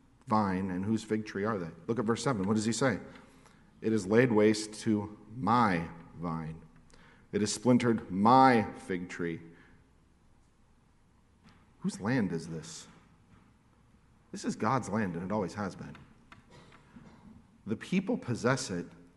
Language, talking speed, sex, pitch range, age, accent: English, 140 wpm, male, 95-120 Hz, 50-69, American